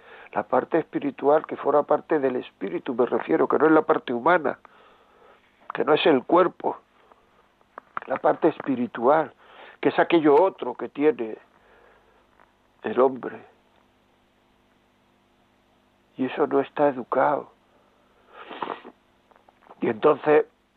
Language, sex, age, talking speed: Spanish, male, 60-79, 115 wpm